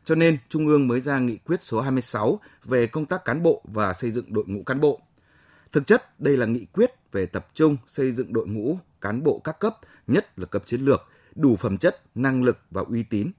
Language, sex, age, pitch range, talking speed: Vietnamese, male, 20-39, 110-150 Hz, 235 wpm